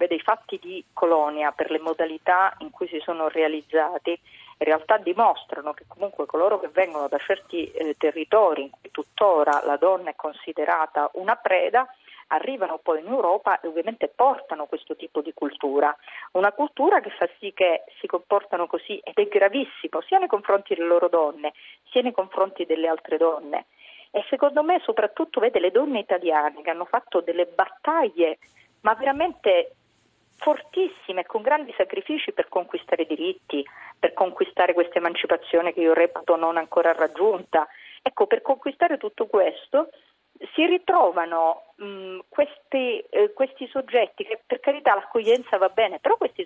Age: 40-59